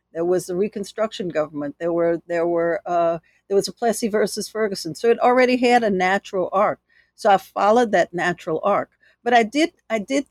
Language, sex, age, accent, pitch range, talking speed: English, female, 60-79, American, 180-235 Hz, 200 wpm